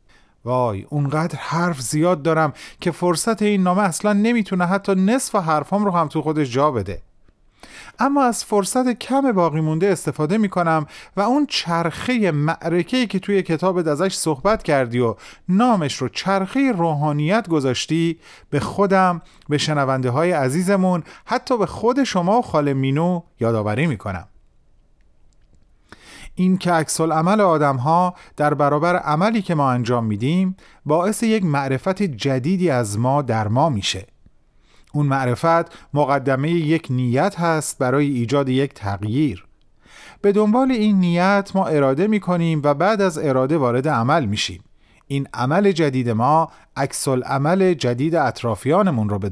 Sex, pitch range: male, 130-185 Hz